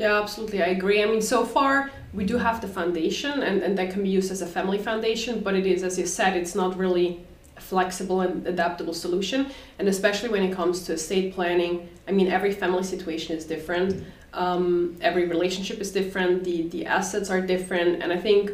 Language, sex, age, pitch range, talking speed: English, female, 20-39, 175-200 Hz, 210 wpm